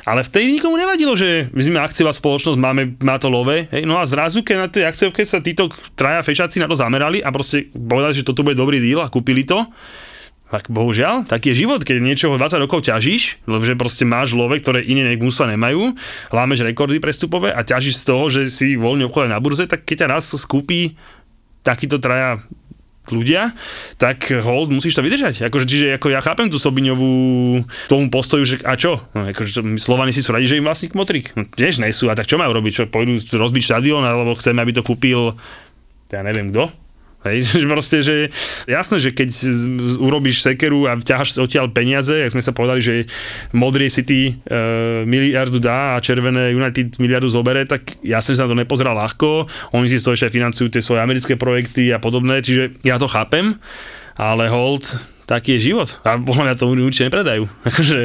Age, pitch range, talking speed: 30-49, 120-145 Hz, 190 wpm